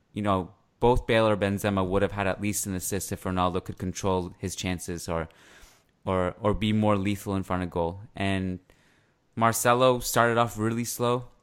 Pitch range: 95-115 Hz